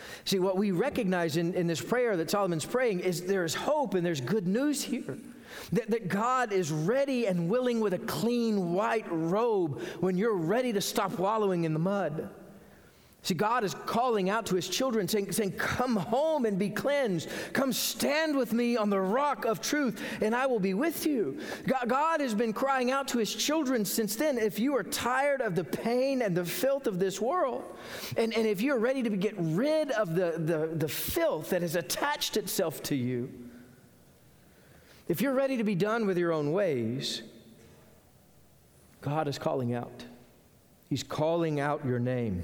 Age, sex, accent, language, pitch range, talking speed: 40-59, male, American, English, 140-235 Hz, 185 wpm